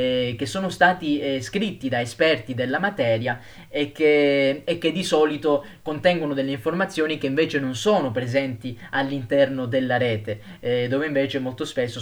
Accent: native